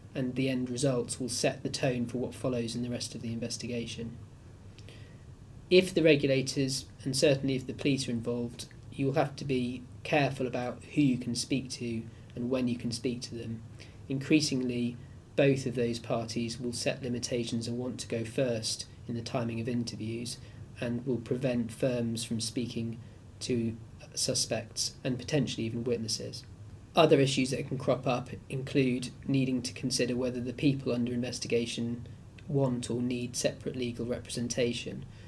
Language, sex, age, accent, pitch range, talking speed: English, male, 20-39, British, 115-130 Hz, 165 wpm